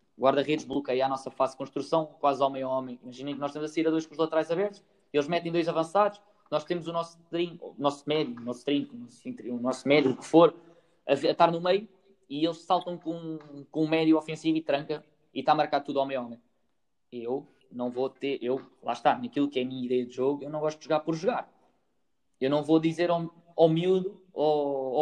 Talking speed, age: 220 wpm, 20-39